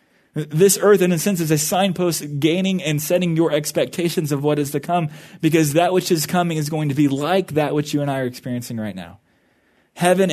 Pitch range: 145-175 Hz